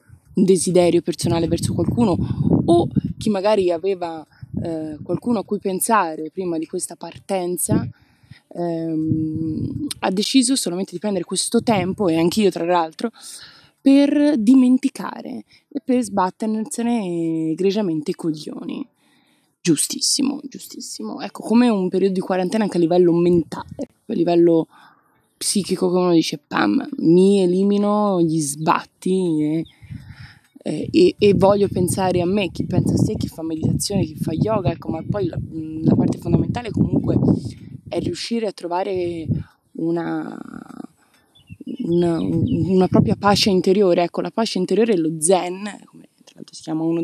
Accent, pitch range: native, 170-215 Hz